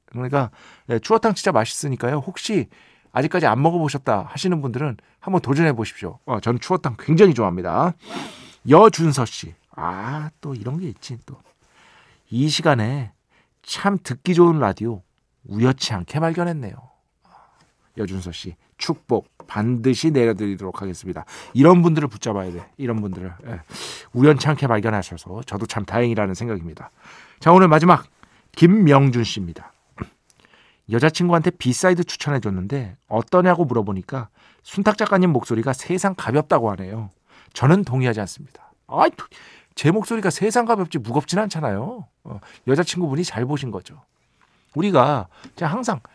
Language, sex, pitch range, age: Korean, male, 110-175 Hz, 40-59